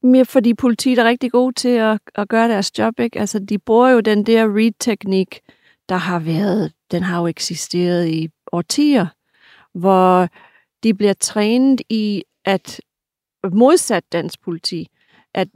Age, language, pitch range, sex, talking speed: 40-59, Danish, 185-225 Hz, female, 145 wpm